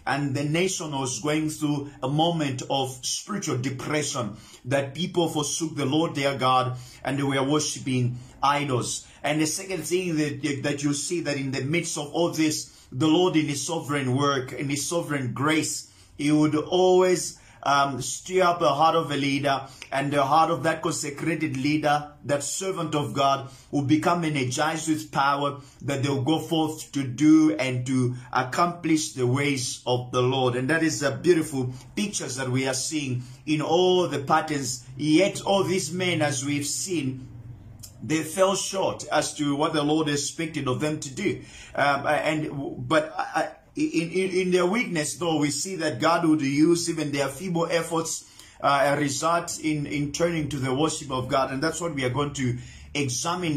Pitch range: 135-160 Hz